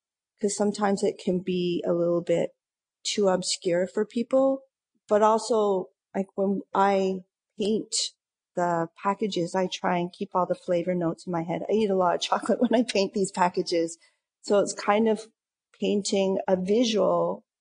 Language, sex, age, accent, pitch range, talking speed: English, female, 40-59, American, 175-210 Hz, 165 wpm